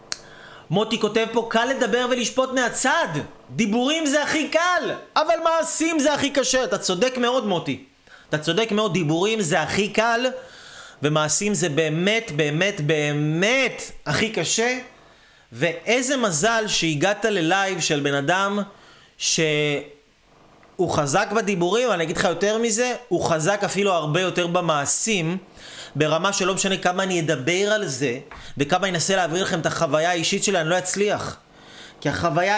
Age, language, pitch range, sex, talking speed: 30-49, Hebrew, 170-225 Hz, male, 145 wpm